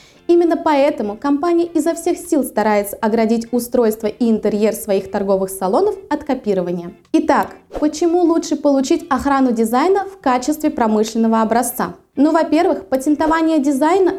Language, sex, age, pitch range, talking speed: Russian, female, 20-39, 230-315 Hz, 125 wpm